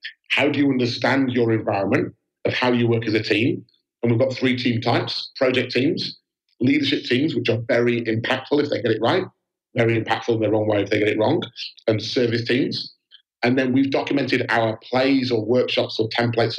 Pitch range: 115-135 Hz